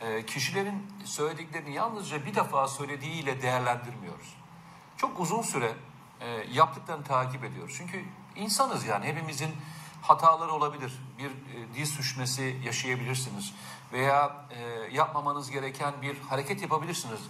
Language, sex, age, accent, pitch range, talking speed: Turkish, male, 40-59, native, 130-175 Hz, 105 wpm